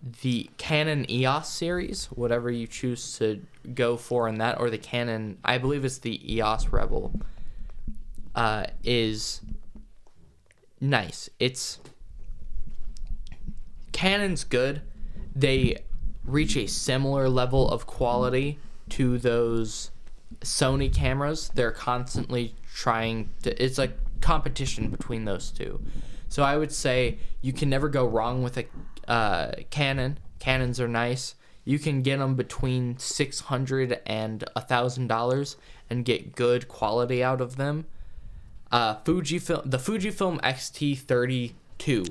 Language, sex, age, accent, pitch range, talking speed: English, male, 10-29, American, 115-135 Hz, 120 wpm